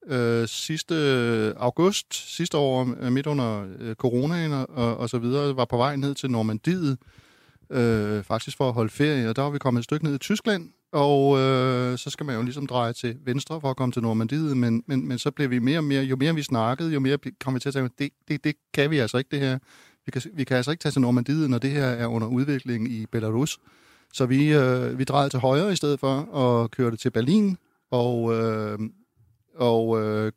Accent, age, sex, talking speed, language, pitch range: native, 30-49, male, 225 wpm, Danish, 115-140 Hz